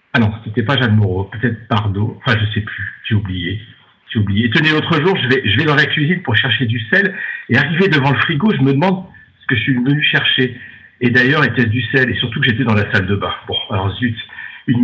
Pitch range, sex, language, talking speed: 110-140 Hz, male, French, 255 wpm